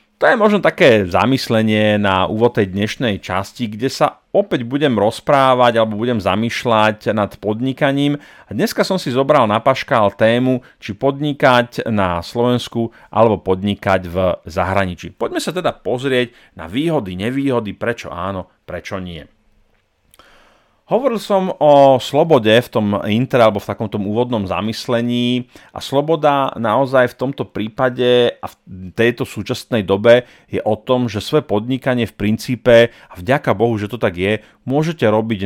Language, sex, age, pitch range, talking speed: Slovak, male, 40-59, 105-130 Hz, 145 wpm